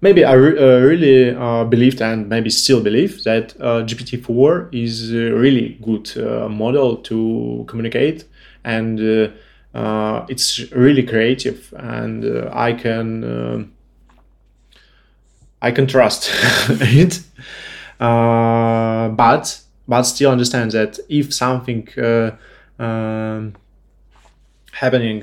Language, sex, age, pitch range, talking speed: English, male, 20-39, 115-125 Hz, 115 wpm